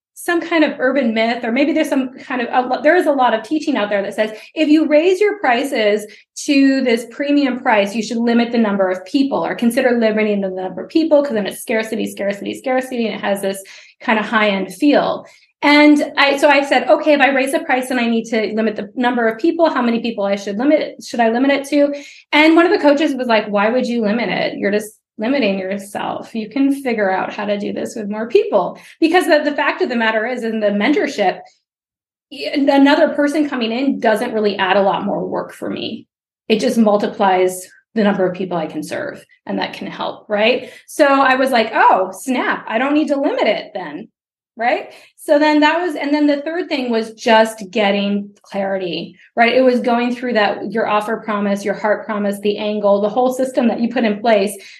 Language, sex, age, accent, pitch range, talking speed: English, female, 20-39, American, 210-285 Hz, 225 wpm